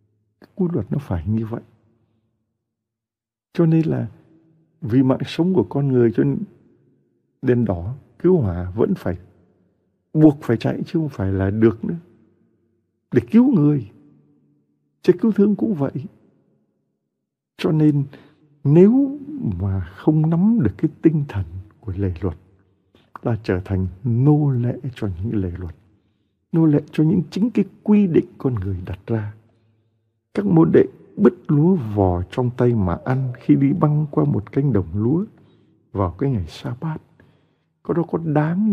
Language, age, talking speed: Vietnamese, 60-79, 155 wpm